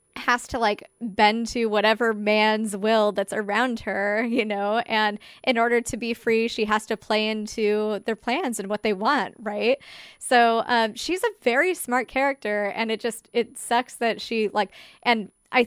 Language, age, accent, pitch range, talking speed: English, 20-39, American, 210-265 Hz, 185 wpm